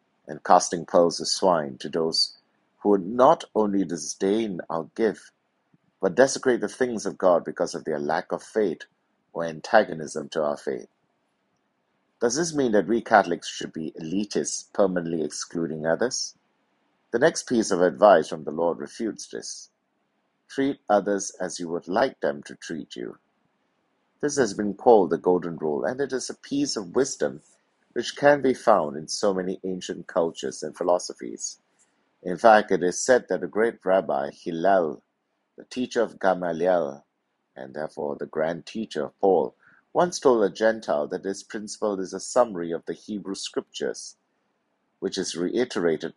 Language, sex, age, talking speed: English, male, 60-79, 165 wpm